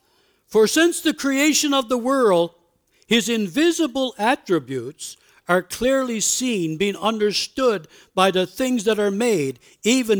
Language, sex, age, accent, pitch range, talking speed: English, male, 60-79, American, 195-275 Hz, 130 wpm